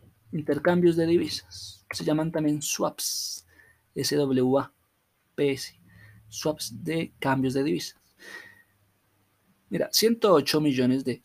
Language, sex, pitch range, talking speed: Spanish, male, 125-175 Hz, 95 wpm